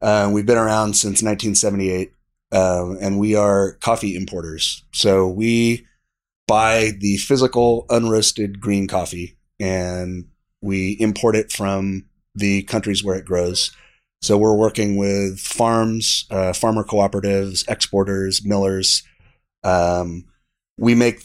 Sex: male